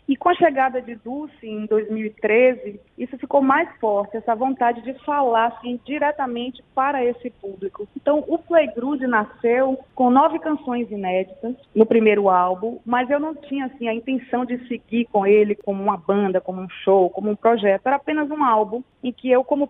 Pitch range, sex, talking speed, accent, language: 210-260 Hz, female, 185 wpm, Brazilian, Portuguese